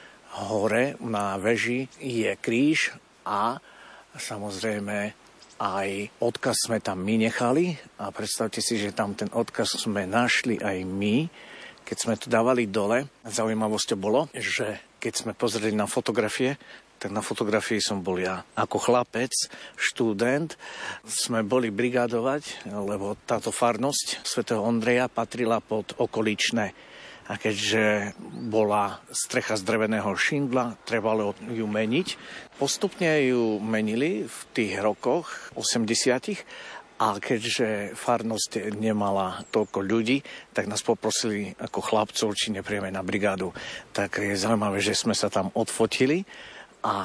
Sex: male